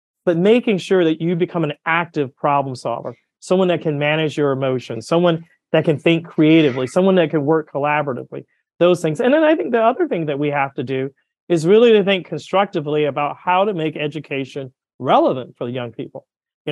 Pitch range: 150-195 Hz